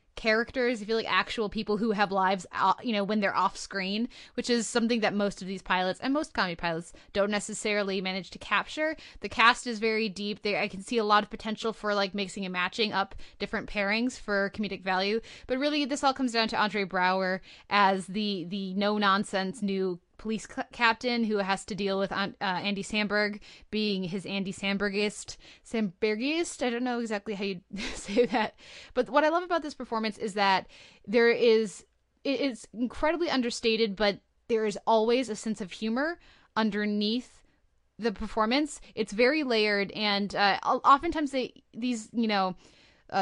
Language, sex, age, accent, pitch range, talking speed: English, female, 10-29, American, 200-235 Hz, 180 wpm